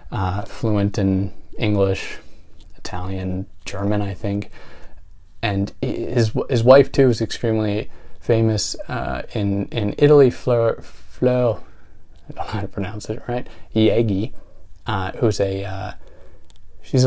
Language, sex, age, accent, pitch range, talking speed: English, male, 20-39, American, 100-120 Hz, 125 wpm